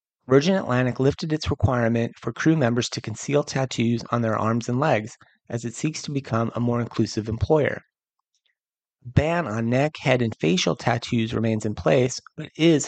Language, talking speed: English, 170 wpm